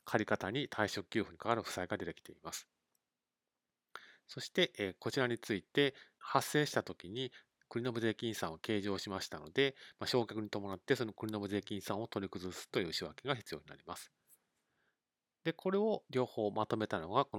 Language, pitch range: Japanese, 100-135 Hz